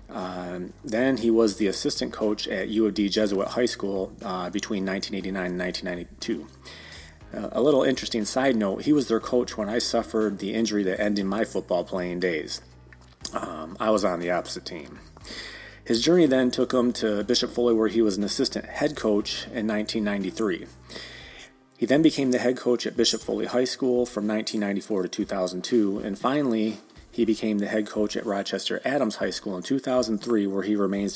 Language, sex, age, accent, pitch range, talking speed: English, male, 30-49, American, 100-120 Hz, 185 wpm